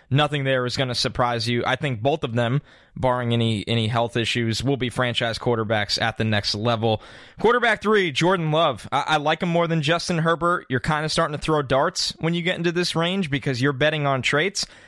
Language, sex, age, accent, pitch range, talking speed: English, male, 20-39, American, 125-155 Hz, 220 wpm